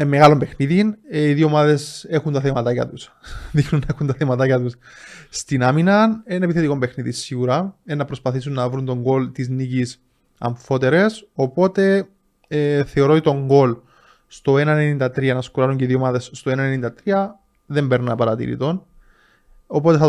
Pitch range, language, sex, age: 130-165 Hz, Greek, male, 20-39